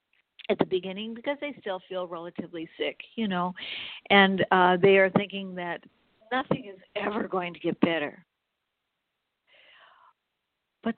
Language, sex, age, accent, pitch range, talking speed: English, female, 60-79, American, 180-225 Hz, 135 wpm